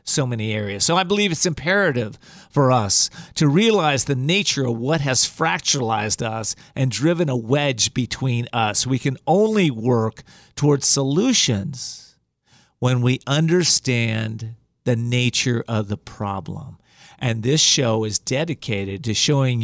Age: 40-59